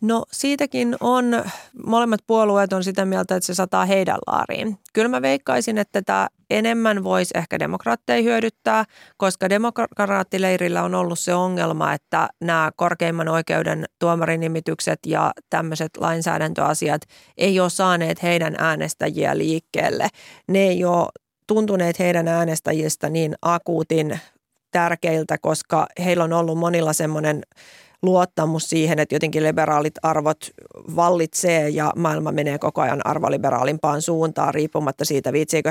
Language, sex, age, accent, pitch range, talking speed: Finnish, female, 30-49, native, 155-175 Hz, 130 wpm